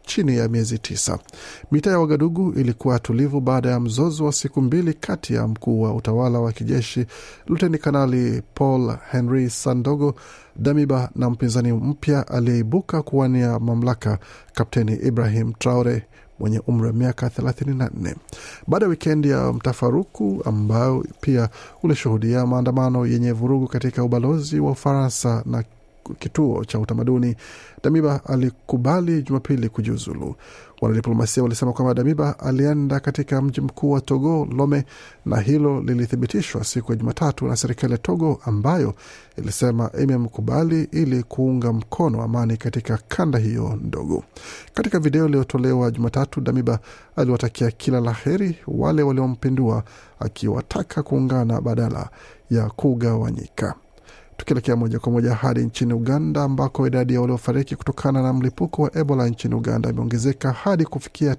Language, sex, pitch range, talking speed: Swahili, male, 115-140 Hz, 130 wpm